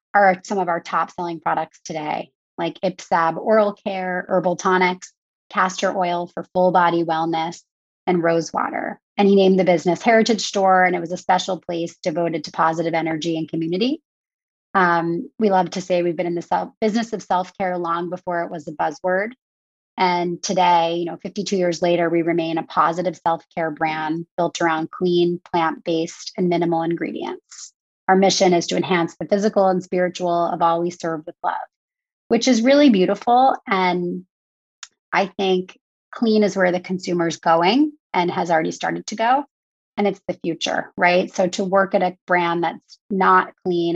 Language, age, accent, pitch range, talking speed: English, 30-49, American, 170-195 Hz, 175 wpm